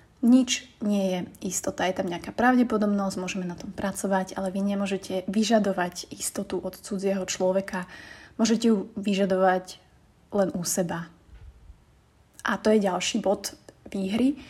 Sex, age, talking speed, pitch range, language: female, 30-49, 130 wpm, 190-215 Hz, Slovak